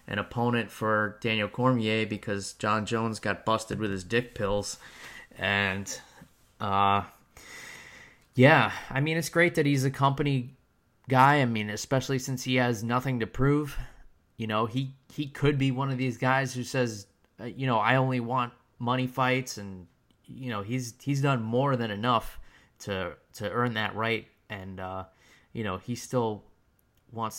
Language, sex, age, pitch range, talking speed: English, male, 20-39, 100-130 Hz, 165 wpm